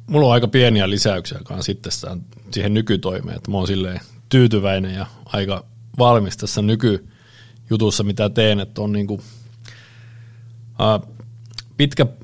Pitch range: 100-115 Hz